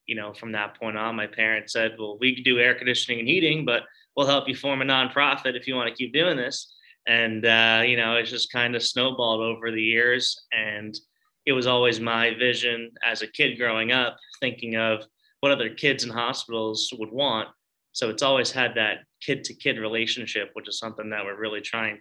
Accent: American